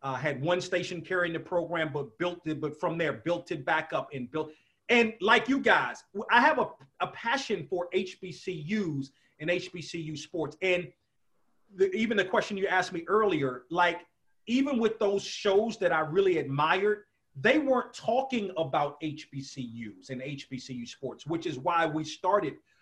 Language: English